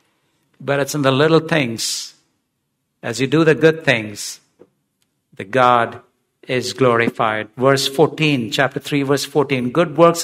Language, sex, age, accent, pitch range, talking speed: English, male, 60-79, Indian, 145-185 Hz, 140 wpm